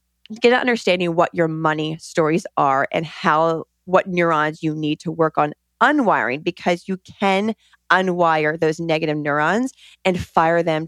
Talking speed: 155 wpm